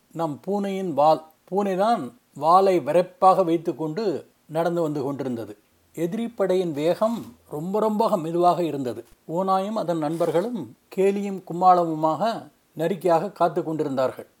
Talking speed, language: 105 wpm, Tamil